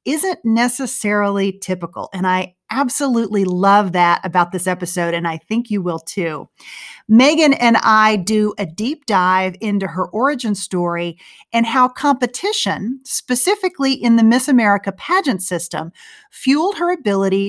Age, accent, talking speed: 40-59, American, 140 wpm